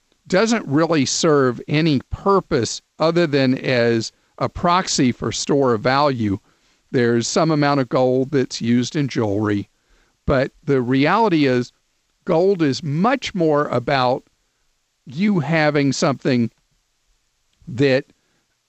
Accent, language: American, English